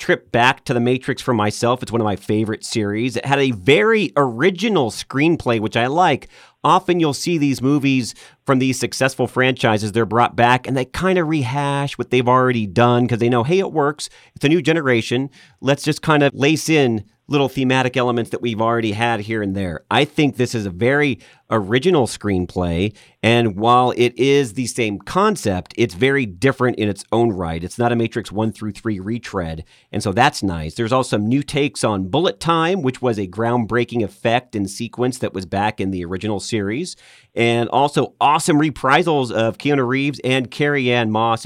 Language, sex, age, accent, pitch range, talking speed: English, male, 40-59, American, 105-135 Hz, 195 wpm